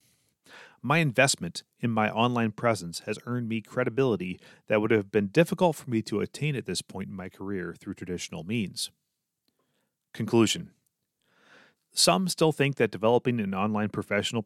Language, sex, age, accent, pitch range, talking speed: English, male, 30-49, American, 95-130 Hz, 155 wpm